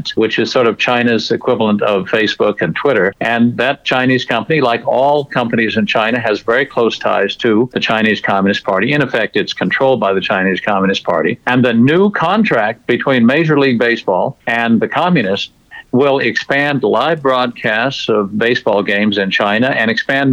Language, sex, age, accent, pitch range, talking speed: English, male, 60-79, American, 115-150 Hz, 175 wpm